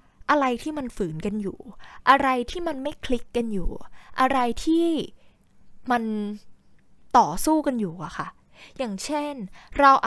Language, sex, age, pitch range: Thai, female, 10-29, 205-270 Hz